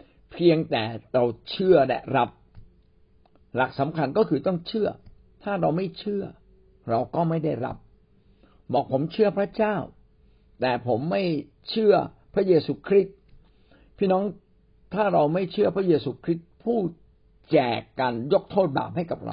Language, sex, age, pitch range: Thai, male, 60-79, 125-200 Hz